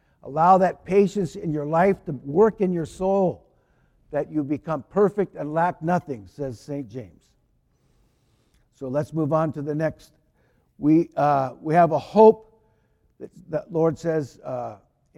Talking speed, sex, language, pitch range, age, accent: 155 wpm, male, English, 150-195 Hz, 60-79, American